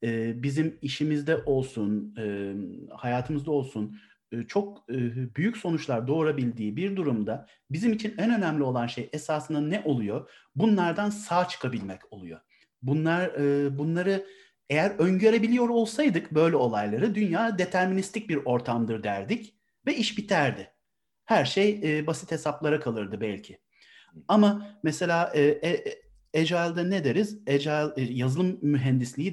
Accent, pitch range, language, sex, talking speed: native, 130-190 Hz, Turkish, male, 115 wpm